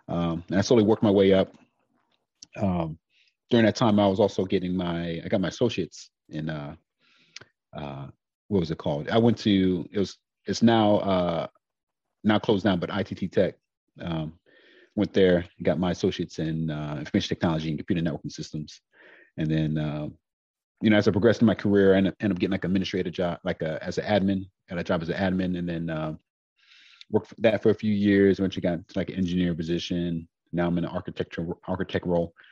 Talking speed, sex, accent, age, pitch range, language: 200 wpm, male, American, 30-49, 85-100 Hz, English